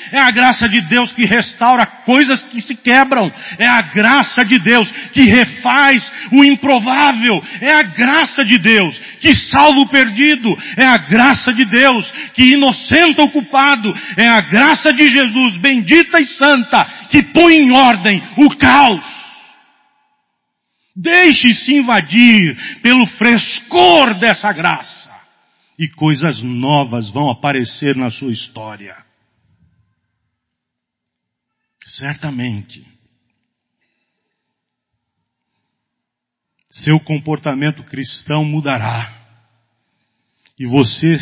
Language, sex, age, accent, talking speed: Portuguese, male, 40-59, Brazilian, 105 wpm